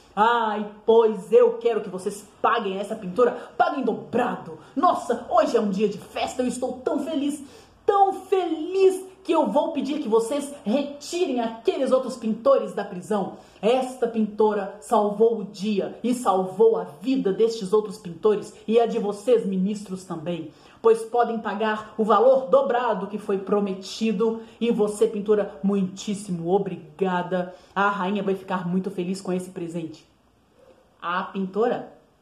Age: 30-49